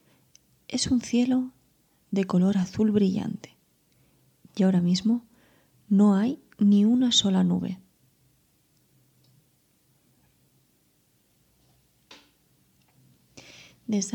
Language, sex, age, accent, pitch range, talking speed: Spanish, female, 20-39, Spanish, 190-220 Hz, 70 wpm